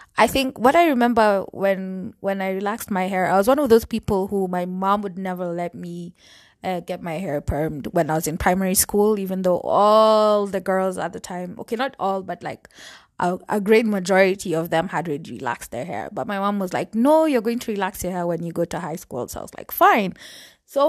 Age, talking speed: 20-39, 235 wpm